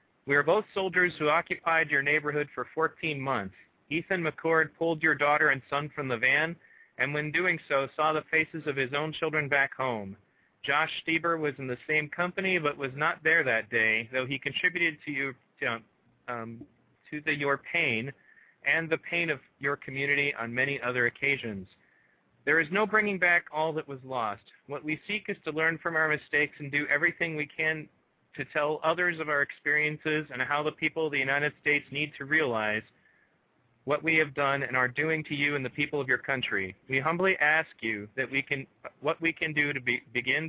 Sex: male